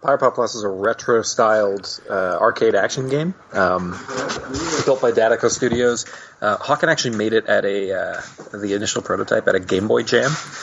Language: English